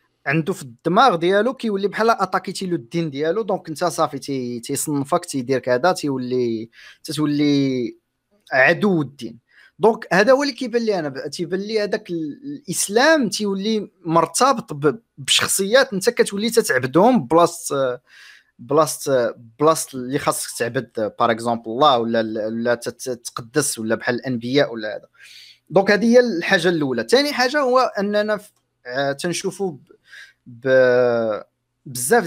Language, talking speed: Arabic, 125 wpm